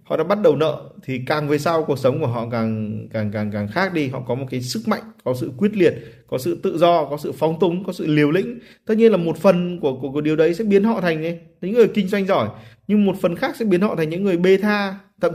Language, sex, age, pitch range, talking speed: Vietnamese, male, 20-39, 135-200 Hz, 290 wpm